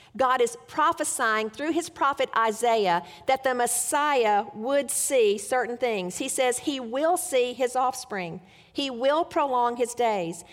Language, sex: English, female